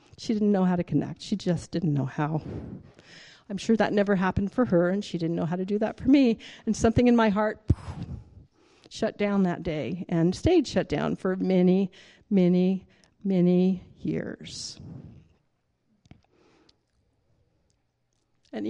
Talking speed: 155 wpm